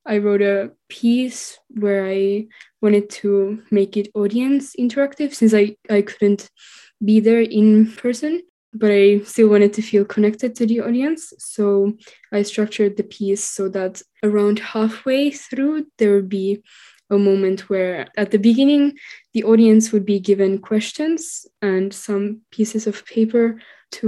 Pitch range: 200-230 Hz